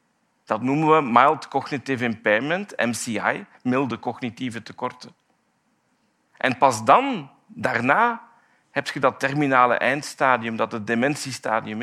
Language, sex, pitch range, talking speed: Dutch, male, 125-185 Hz, 110 wpm